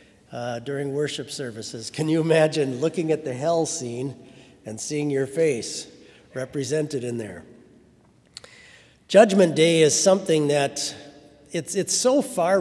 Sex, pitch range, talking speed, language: male, 130-165 Hz, 135 wpm, English